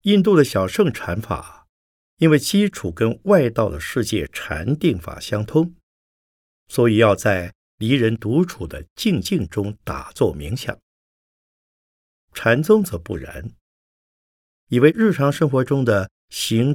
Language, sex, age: Chinese, male, 50-69